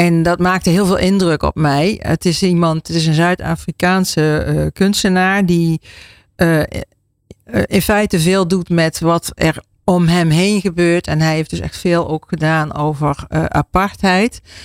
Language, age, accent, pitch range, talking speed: Dutch, 50-69, Dutch, 155-180 Hz, 170 wpm